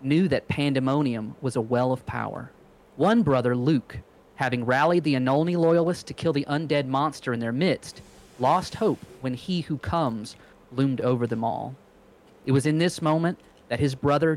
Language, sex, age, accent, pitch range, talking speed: English, male, 30-49, American, 125-155 Hz, 175 wpm